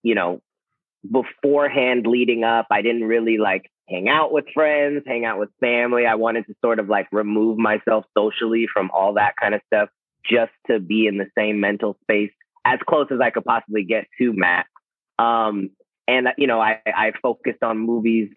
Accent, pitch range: American, 100-120 Hz